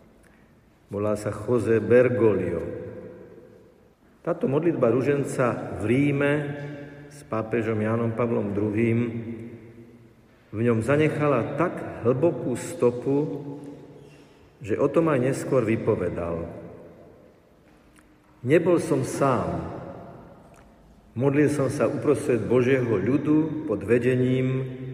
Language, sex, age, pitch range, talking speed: Slovak, male, 50-69, 110-145 Hz, 90 wpm